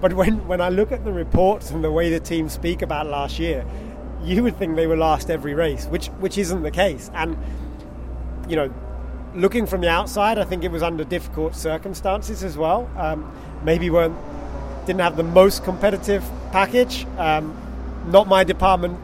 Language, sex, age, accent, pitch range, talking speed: English, male, 30-49, British, 150-190 Hz, 185 wpm